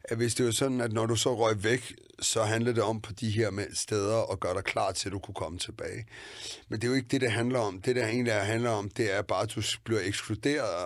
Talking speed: 285 wpm